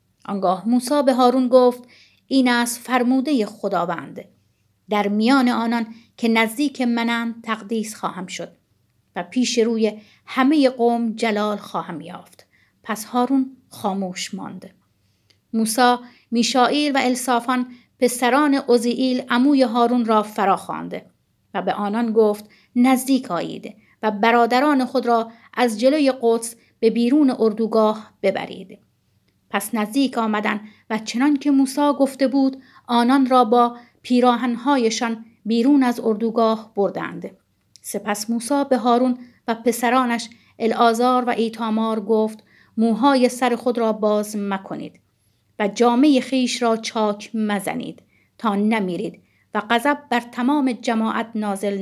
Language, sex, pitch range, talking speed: Persian, female, 210-250 Hz, 120 wpm